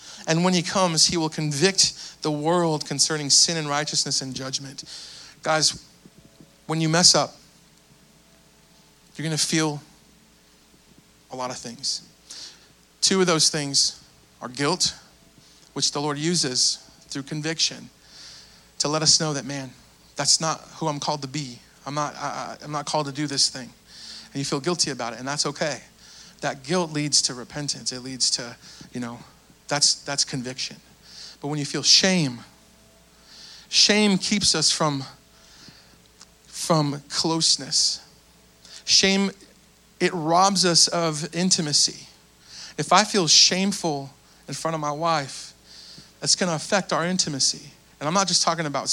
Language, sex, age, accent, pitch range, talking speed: English, male, 40-59, American, 135-165 Hz, 150 wpm